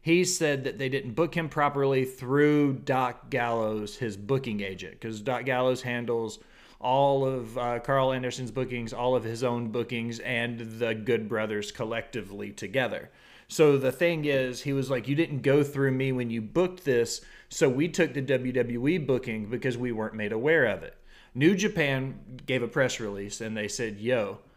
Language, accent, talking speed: English, American, 180 wpm